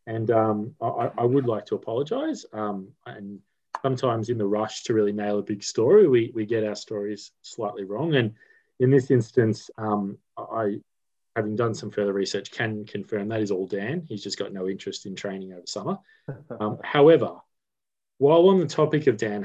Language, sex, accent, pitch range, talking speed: English, male, Australian, 105-140 Hz, 190 wpm